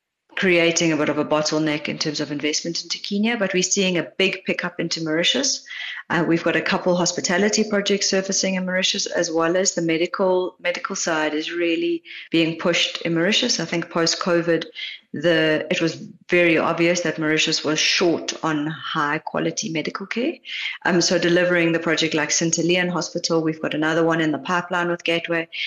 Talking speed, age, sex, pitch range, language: 185 wpm, 30-49, female, 160-190 Hz, English